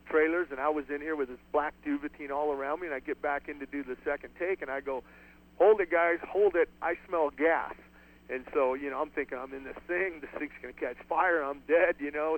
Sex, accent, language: male, American, English